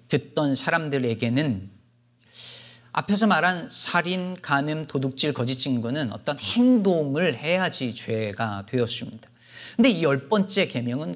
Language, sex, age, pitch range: Korean, male, 40-59, 120-185 Hz